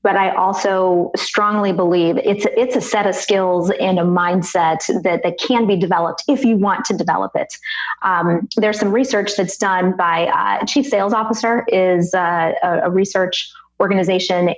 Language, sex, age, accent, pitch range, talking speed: English, female, 30-49, American, 180-210 Hz, 170 wpm